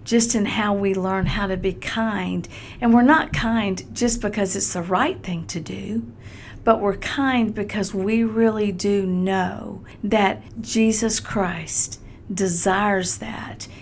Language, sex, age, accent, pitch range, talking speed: English, female, 50-69, American, 185-225 Hz, 150 wpm